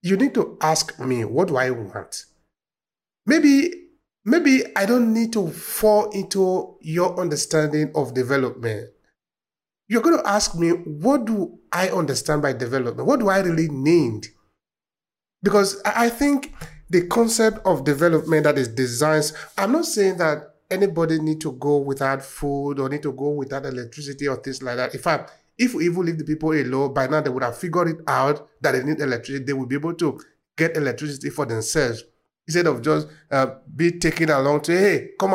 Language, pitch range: English, 140-195 Hz